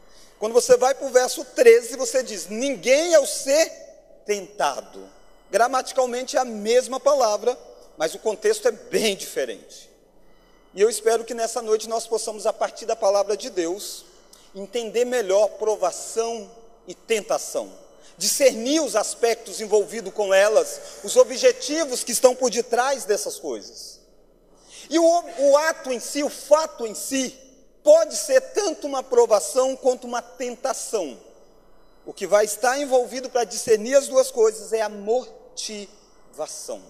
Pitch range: 215-290 Hz